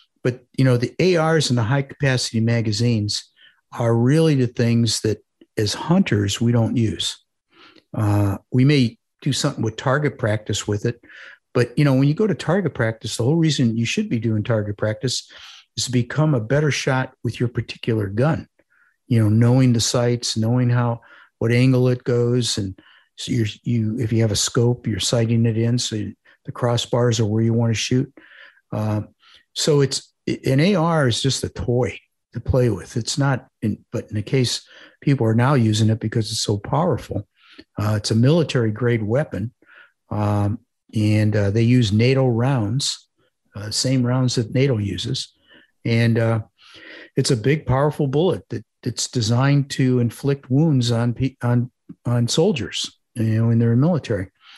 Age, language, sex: 50-69, English, male